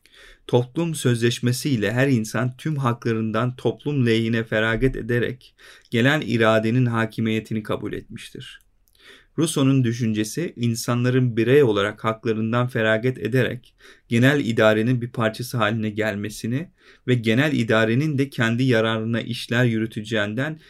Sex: male